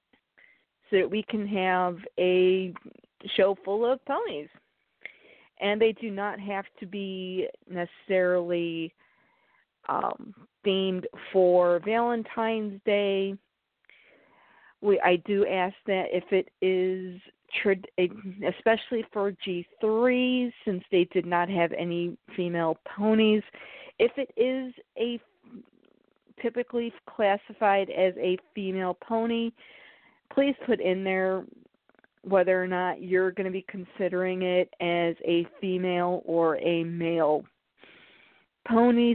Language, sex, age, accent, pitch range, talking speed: English, female, 40-59, American, 180-225 Hz, 110 wpm